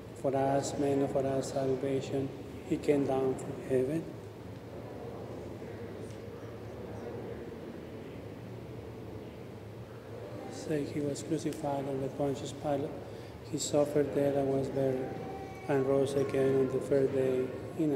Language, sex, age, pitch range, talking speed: English, male, 30-49, 130-145 Hz, 115 wpm